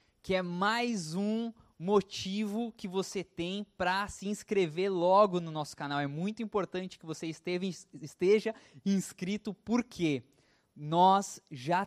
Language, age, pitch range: Portuguese, 20-39, 165-205 Hz